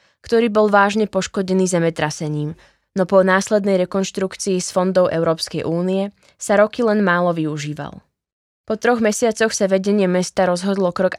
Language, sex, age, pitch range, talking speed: Slovak, female, 20-39, 170-200 Hz, 140 wpm